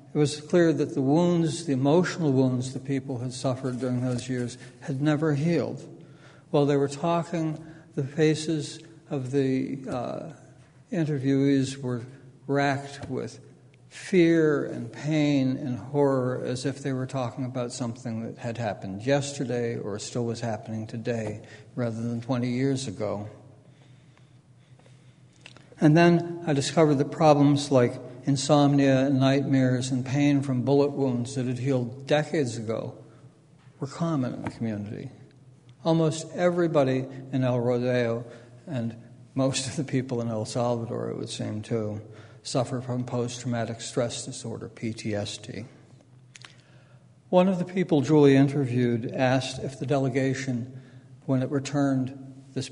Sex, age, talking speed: male, 60-79, 135 wpm